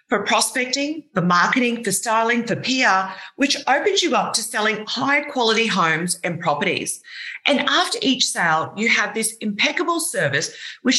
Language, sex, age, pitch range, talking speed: English, female, 40-59, 185-280 Hz, 160 wpm